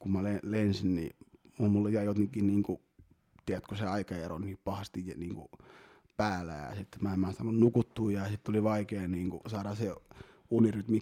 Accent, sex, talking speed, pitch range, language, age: native, male, 175 wpm, 95-115 Hz, Finnish, 30-49